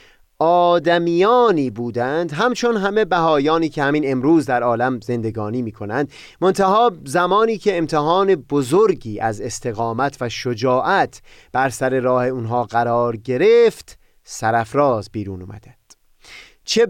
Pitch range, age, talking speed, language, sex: 120-180 Hz, 30-49, 115 wpm, Persian, male